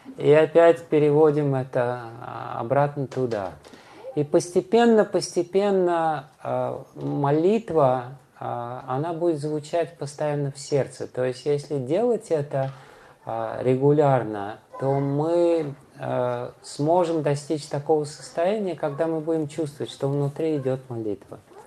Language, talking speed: Russian, 100 wpm